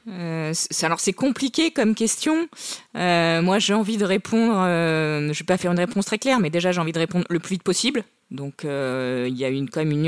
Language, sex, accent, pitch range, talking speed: French, female, French, 155-200 Hz, 240 wpm